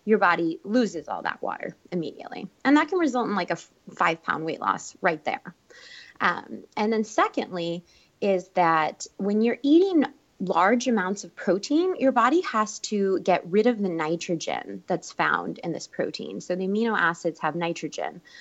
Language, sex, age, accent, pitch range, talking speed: English, female, 20-39, American, 165-220 Hz, 175 wpm